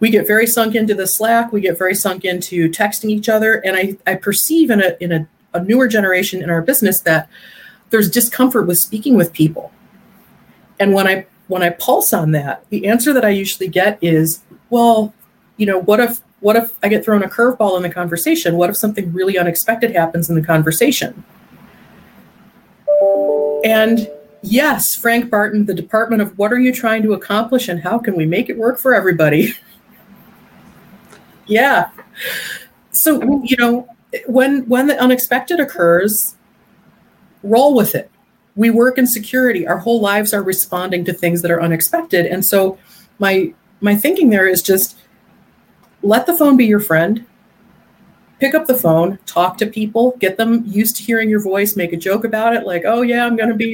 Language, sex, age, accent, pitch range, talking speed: English, female, 30-49, American, 190-230 Hz, 180 wpm